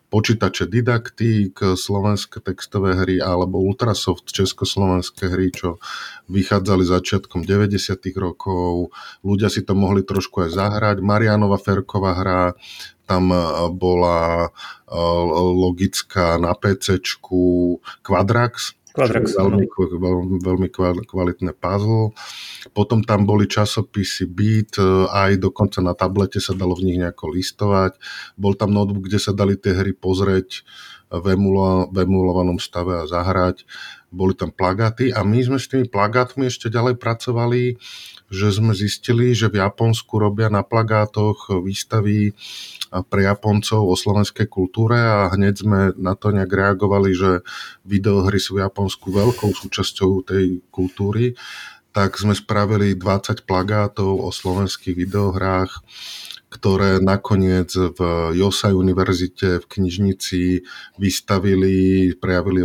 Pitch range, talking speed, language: 90-105 Hz, 120 wpm, Czech